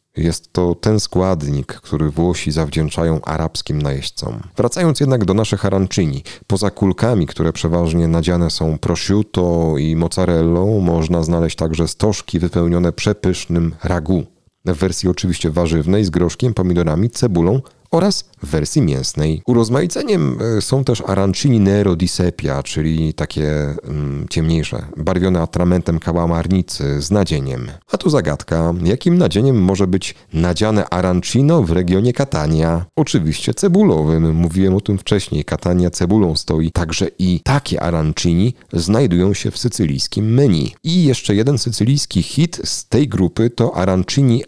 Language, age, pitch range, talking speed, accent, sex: Polish, 40-59, 80-105 Hz, 130 wpm, native, male